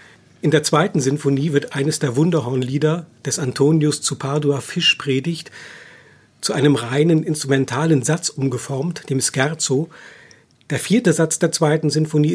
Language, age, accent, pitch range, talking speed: German, 50-69, German, 135-160 Hz, 130 wpm